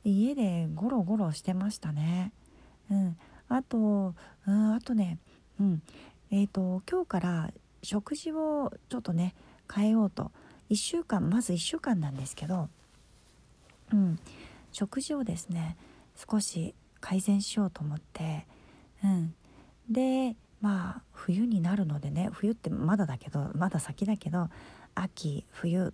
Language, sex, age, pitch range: Japanese, female, 40-59, 170-225 Hz